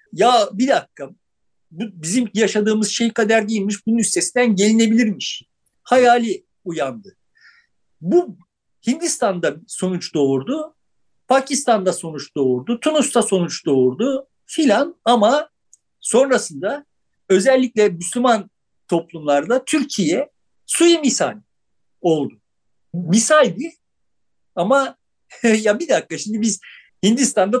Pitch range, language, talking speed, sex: 185-265 Hz, Turkish, 90 wpm, male